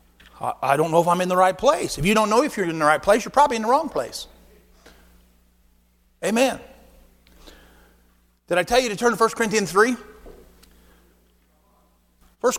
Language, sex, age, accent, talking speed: English, male, 50-69, American, 175 wpm